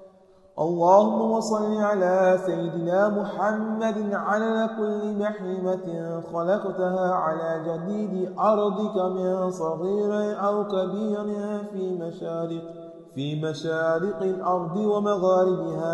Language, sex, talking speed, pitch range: English, male, 85 wpm, 180-210 Hz